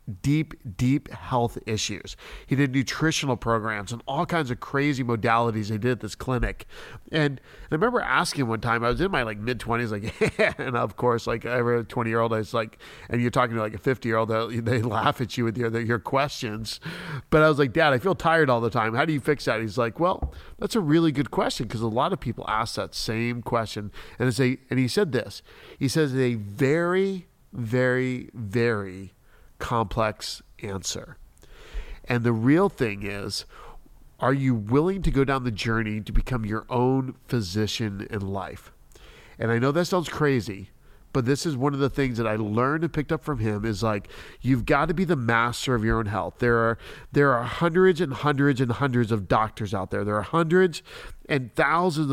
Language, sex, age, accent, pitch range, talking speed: English, male, 40-59, American, 115-145 Hz, 210 wpm